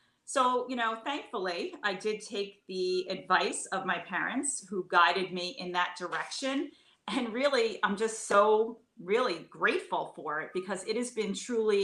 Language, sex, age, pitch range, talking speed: English, female, 40-59, 175-215 Hz, 160 wpm